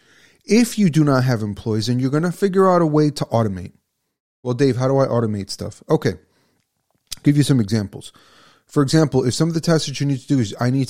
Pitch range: 110-140 Hz